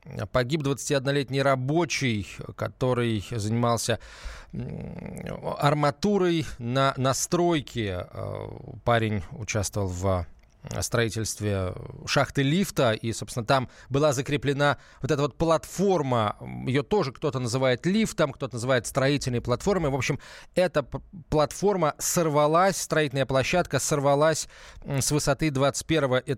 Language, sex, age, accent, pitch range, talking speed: Russian, male, 20-39, native, 115-150 Hz, 100 wpm